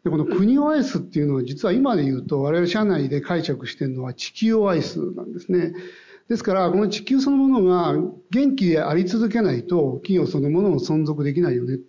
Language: Japanese